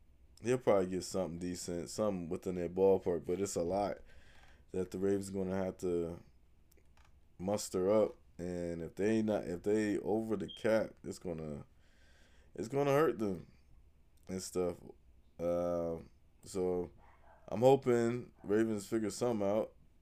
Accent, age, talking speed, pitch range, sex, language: American, 20-39, 140 wpm, 85-115 Hz, male, English